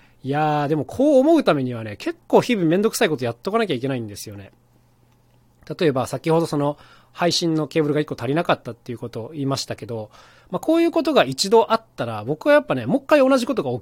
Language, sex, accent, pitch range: Japanese, male, native, 120-190 Hz